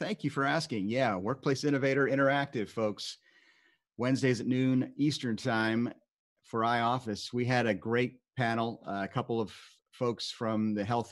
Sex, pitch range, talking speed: male, 100-120 Hz, 150 wpm